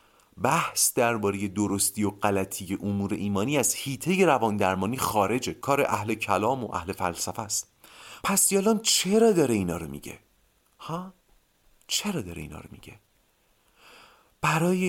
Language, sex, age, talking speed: Persian, male, 40-59, 135 wpm